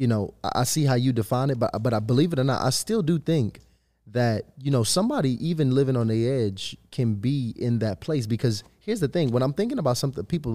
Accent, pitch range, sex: American, 110-135 Hz, male